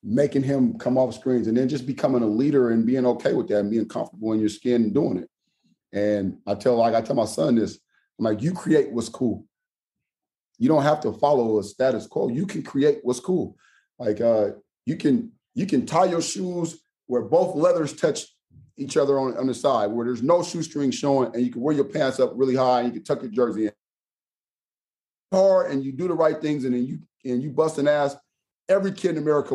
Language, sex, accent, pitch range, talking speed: English, male, American, 110-140 Hz, 225 wpm